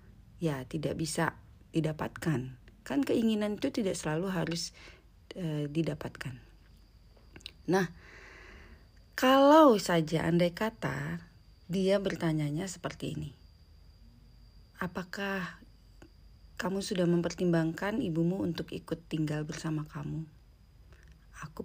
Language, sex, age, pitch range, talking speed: Indonesian, female, 40-59, 150-190 Hz, 90 wpm